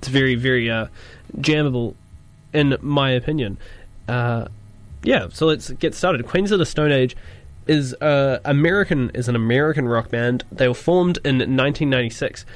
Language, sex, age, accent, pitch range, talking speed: English, male, 20-39, Australian, 110-130 Hz, 155 wpm